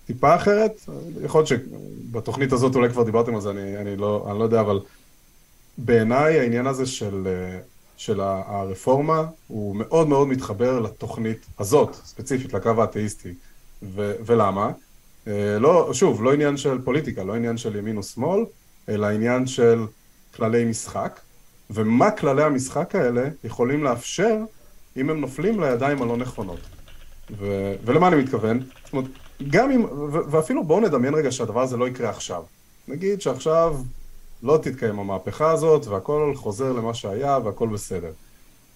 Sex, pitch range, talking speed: male, 105-140 Hz, 140 wpm